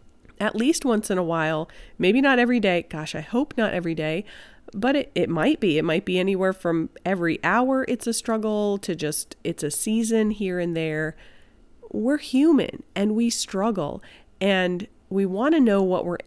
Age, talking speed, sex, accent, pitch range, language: 30-49, 185 wpm, female, American, 170-235 Hz, English